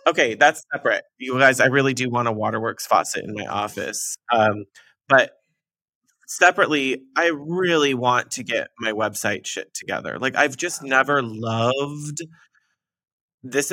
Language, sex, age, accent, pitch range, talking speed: English, male, 20-39, American, 110-135 Hz, 145 wpm